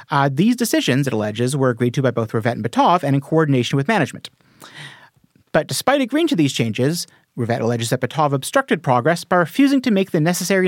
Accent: American